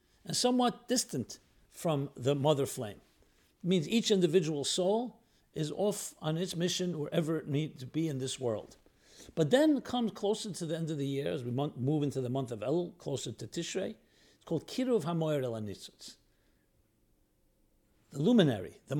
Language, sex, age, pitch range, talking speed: English, male, 60-79, 135-190 Hz, 170 wpm